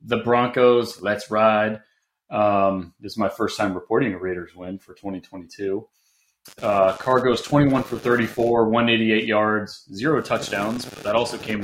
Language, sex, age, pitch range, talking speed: English, male, 30-49, 95-115 Hz, 150 wpm